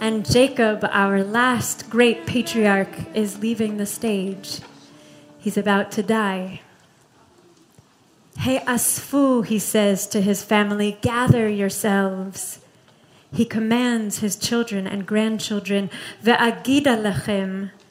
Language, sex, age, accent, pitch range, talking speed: English, female, 30-49, American, 200-240 Hz, 95 wpm